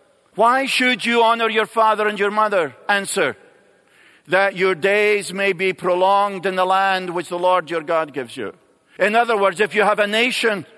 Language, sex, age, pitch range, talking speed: English, male, 50-69, 175-210 Hz, 190 wpm